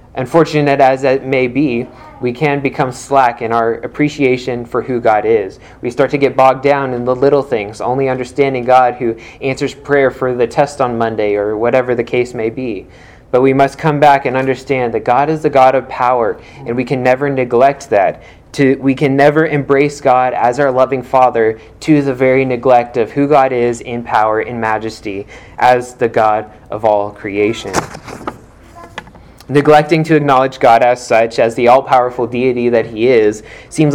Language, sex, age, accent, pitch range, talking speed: English, male, 20-39, American, 120-140 Hz, 185 wpm